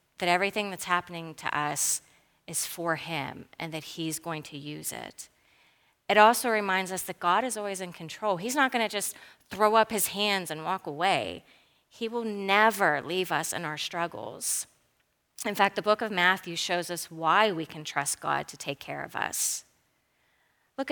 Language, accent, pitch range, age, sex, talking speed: English, American, 165-225 Hz, 30-49, female, 185 wpm